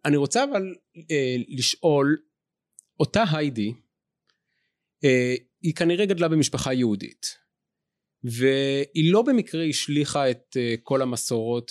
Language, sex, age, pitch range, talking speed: Hebrew, male, 30-49, 125-160 Hz, 110 wpm